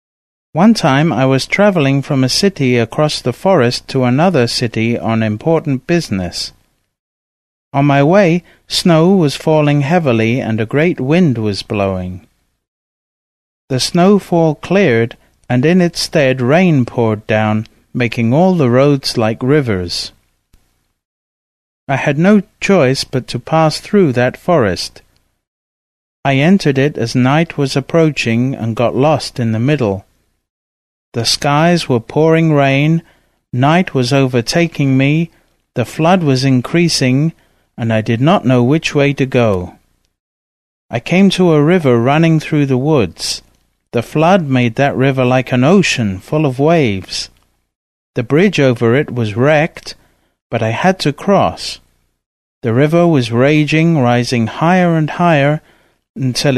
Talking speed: 140 wpm